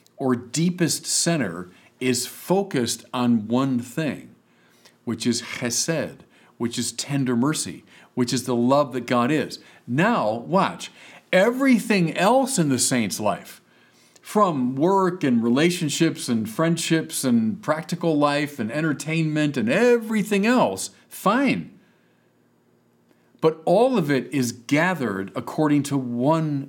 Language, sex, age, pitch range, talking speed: English, male, 50-69, 120-165 Hz, 120 wpm